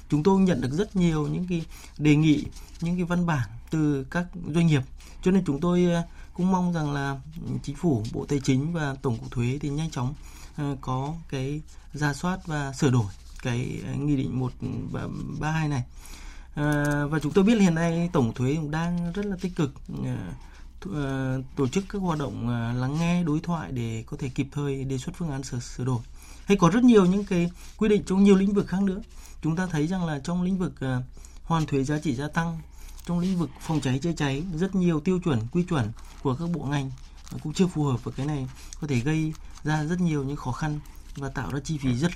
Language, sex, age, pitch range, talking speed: Vietnamese, male, 20-39, 135-170 Hz, 215 wpm